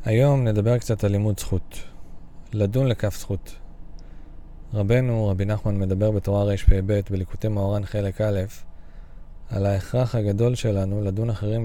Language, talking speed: Hebrew, 130 wpm